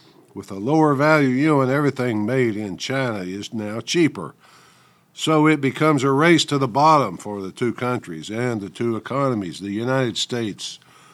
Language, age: English, 60-79